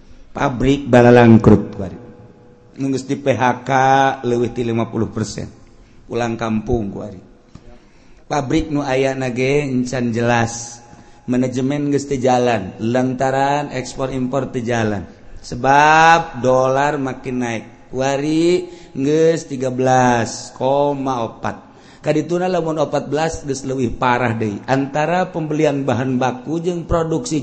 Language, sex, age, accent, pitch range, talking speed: Indonesian, male, 50-69, native, 125-180 Hz, 95 wpm